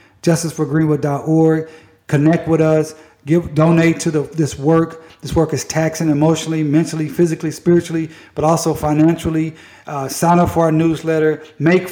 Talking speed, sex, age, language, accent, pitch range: 140 wpm, male, 50-69, English, American, 150-175 Hz